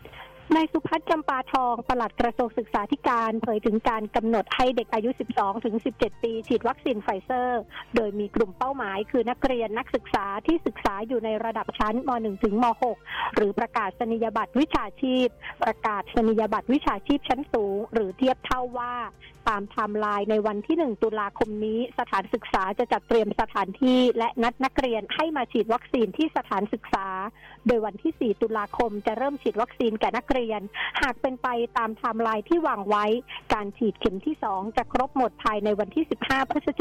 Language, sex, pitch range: Thai, female, 215-255 Hz